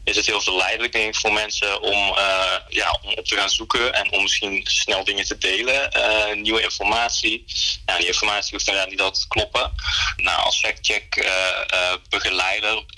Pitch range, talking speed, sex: 90-105 Hz, 185 wpm, male